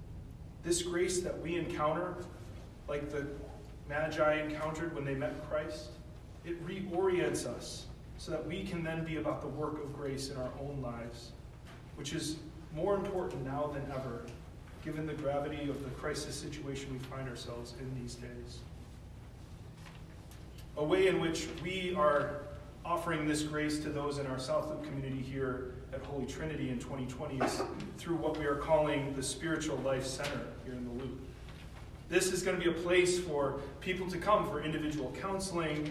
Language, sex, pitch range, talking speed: English, male, 135-165 Hz, 165 wpm